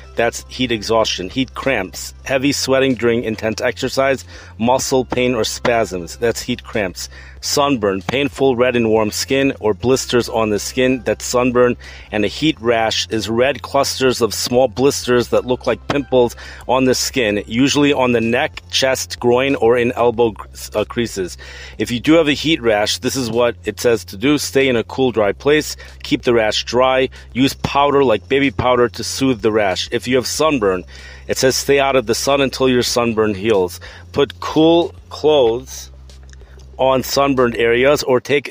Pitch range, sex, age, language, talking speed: 100-130 Hz, male, 40-59, English, 175 wpm